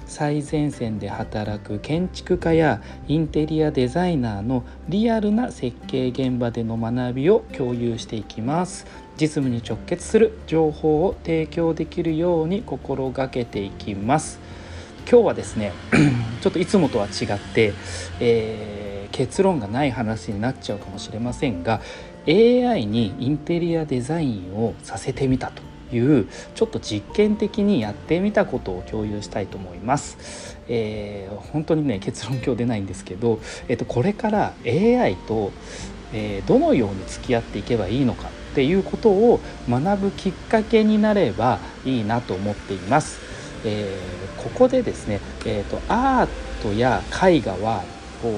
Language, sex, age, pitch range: Japanese, male, 40-59, 105-165 Hz